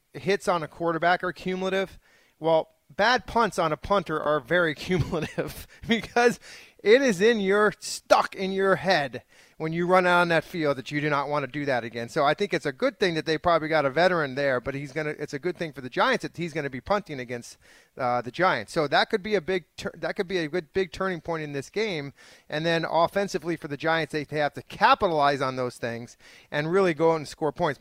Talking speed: 240 wpm